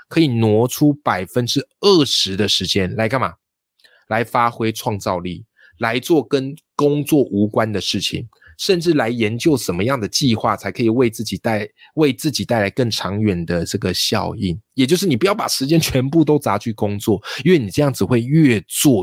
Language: Chinese